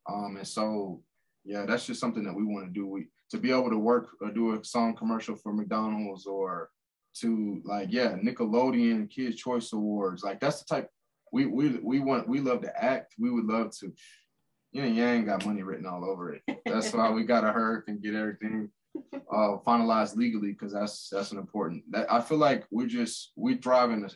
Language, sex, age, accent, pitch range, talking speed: English, male, 20-39, American, 100-120 Hz, 205 wpm